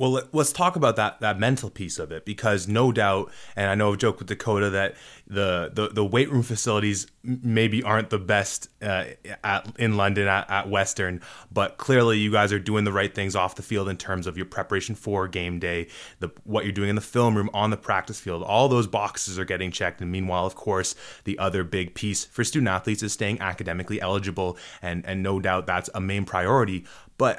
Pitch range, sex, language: 95-110 Hz, male, English